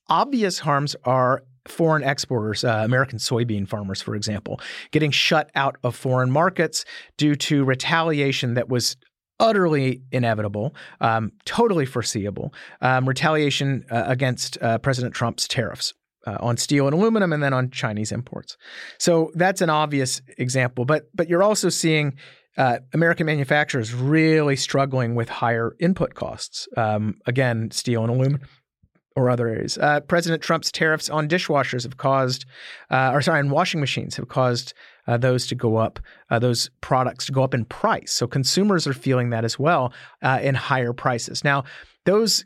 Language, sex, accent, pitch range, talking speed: English, male, American, 125-155 Hz, 160 wpm